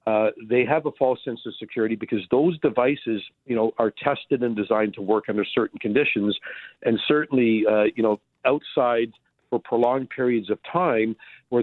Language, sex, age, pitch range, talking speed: English, male, 50-69, 105-125 Hz, 175 wpm